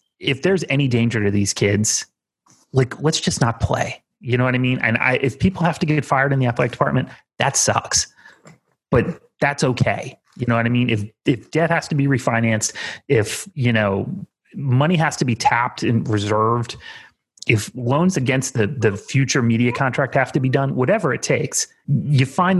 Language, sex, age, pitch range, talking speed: English, male, 30-49, 110-145 Hz, 195 wpm